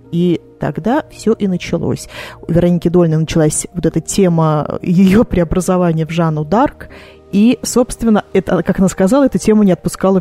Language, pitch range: Russian, 175-220 Hz